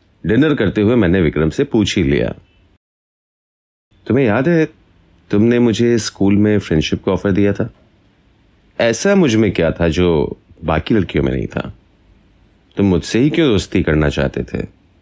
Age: 30-49